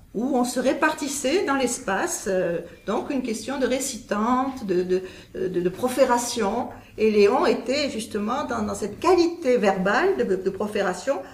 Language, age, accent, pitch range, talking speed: English, 50-69, French, 195-275 Hz, 155 wpm